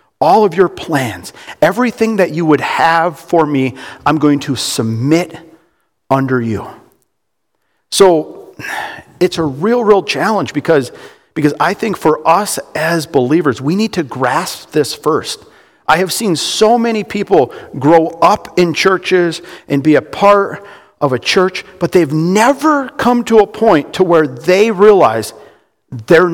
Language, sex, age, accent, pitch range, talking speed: English, male, 50-69, American, 165-225 Hz, 150 wpm